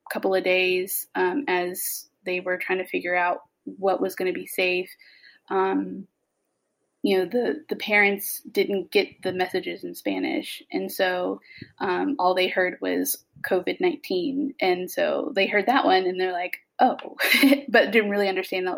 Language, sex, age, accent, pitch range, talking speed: English, female, 20-39, American, 185-295 Hz, 165 wpm